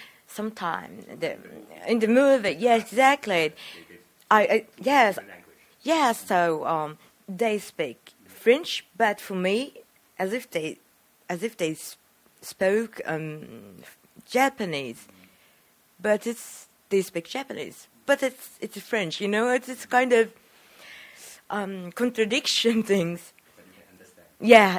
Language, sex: Chinese, female